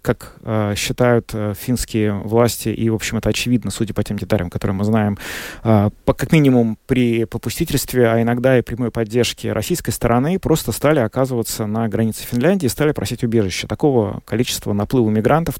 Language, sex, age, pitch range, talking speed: Russian, male, 30-49, 115-140 Hz, 170 wpm